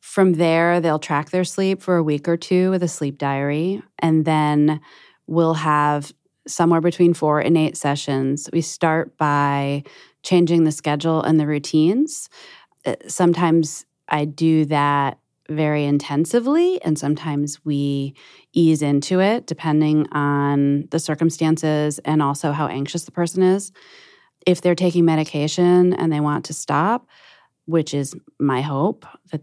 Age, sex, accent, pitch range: 30-49, female, American, 145-175 Hz